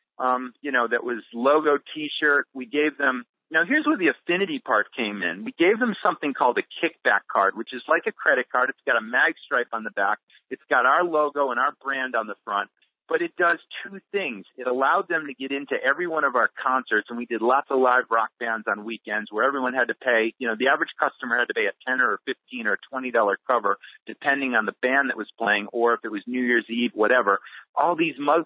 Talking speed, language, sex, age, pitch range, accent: 245 wpm, English, male, 40-59, 120-155 Hz, American